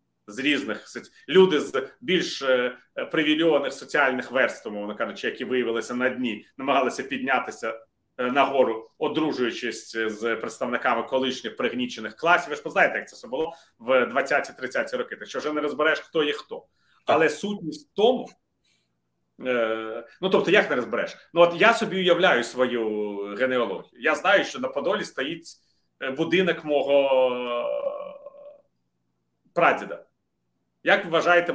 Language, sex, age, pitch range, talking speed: Ukrainian, male, 30-49, 115-175 Hz, 125 wpm